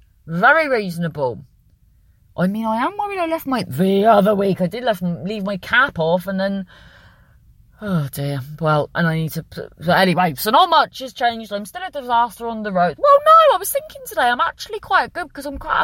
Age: 30-49